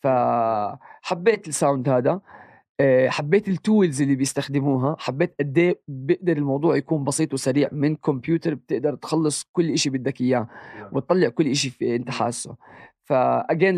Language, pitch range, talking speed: Arabic, 135-165 Hz, 120 wpm